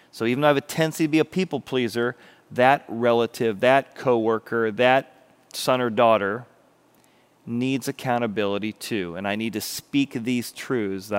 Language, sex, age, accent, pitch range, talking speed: English, male, 40-59, American, 110-135 Hz, 165 wpm